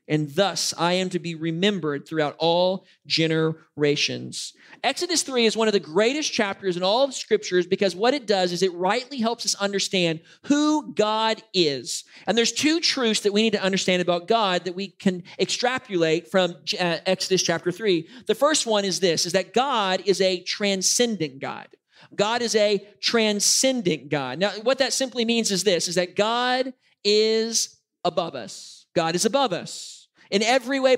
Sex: male